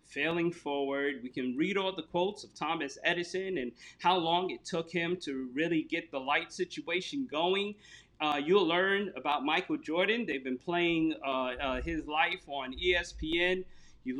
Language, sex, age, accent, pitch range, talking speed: English, male, 40-59, American, 155-200 Hz, 170 wpm